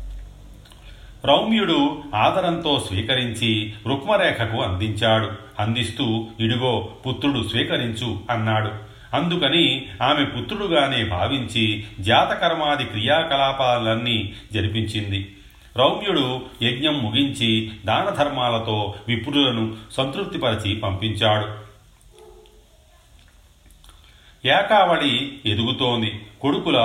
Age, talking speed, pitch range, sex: 40-59, 60 wpm, 105-130 Hz, male